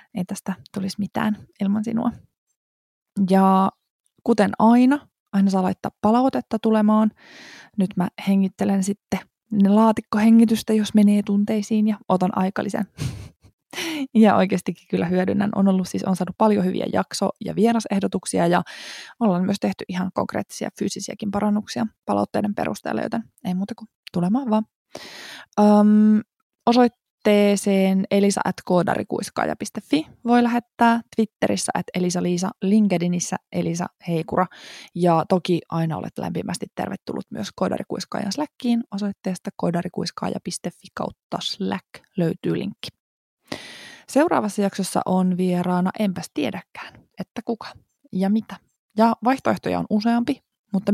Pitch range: 185-225 Hz